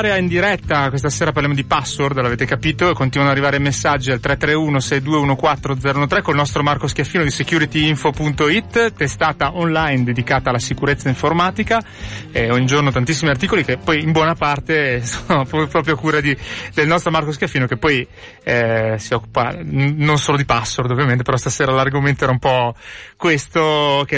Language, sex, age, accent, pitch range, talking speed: Italian, male, 30-49, native, 130-165 Hz, 165 wpm